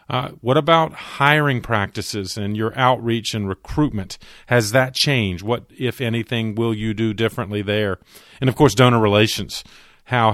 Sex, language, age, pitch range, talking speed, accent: male, English, 40-59, 100-115 Hz, 155 wpm, American